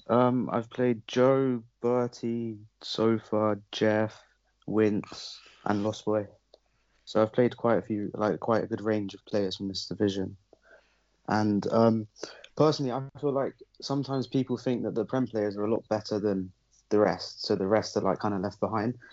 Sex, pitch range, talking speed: male, 100-115 Hz, 180 wpm